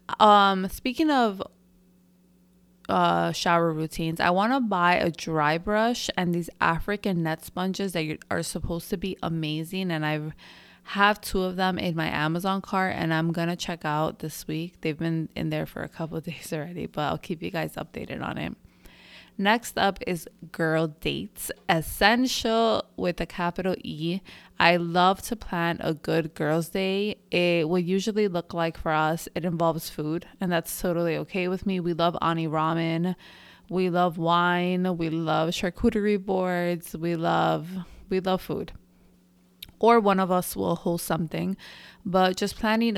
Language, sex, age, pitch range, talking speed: English, female, 20-39, 165-190 Hz, 165 wpm